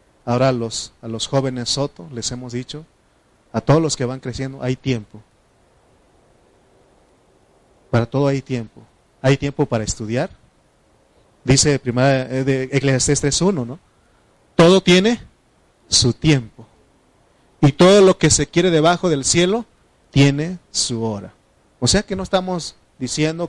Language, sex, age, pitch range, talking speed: Spanish, male, 30-49, 120-155 Hz, 135 wpm